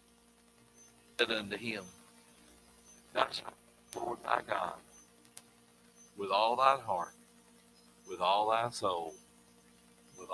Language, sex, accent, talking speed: English, male, American, 85 wpm